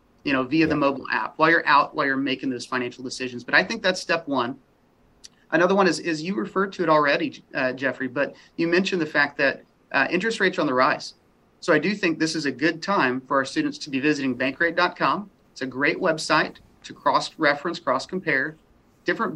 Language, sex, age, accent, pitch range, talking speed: English, male, 30-49, American, 140-180 Hz, 215 wpm